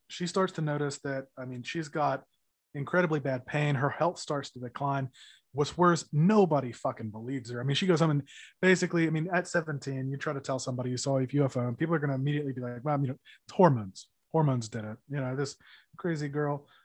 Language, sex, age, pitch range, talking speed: English, male, 30-49, 135-160 Hz, 225 wpm